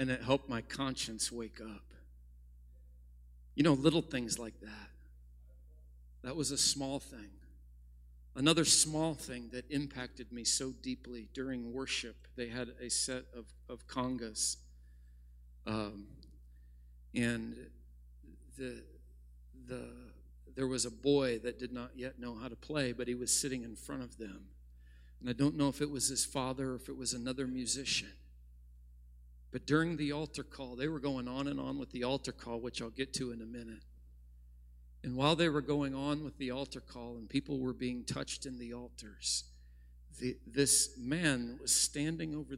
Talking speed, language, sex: 170 wpm, English, male